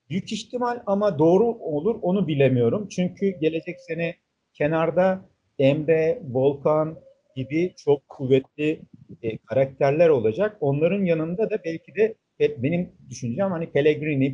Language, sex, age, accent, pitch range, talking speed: Turkish, male, 50-69, native, 125-175 Hz, 115 wpm